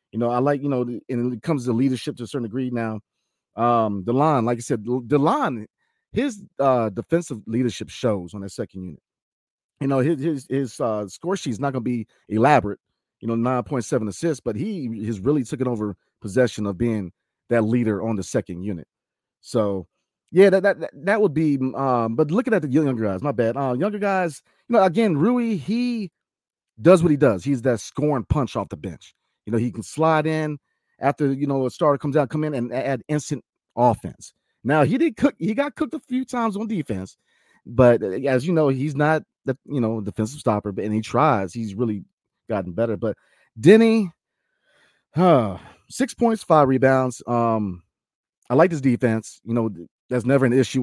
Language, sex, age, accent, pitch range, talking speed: English, male, 40-59, American, 110-155 Hz, 200 wpm